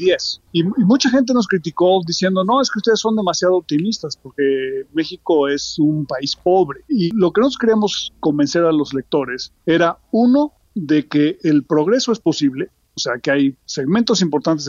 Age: 40-59